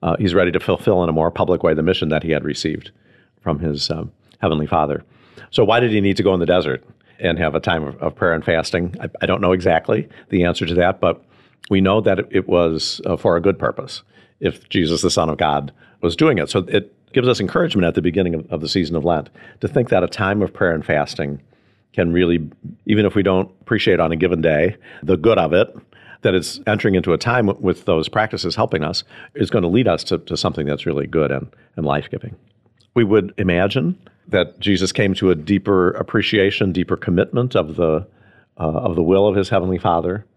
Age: 50-69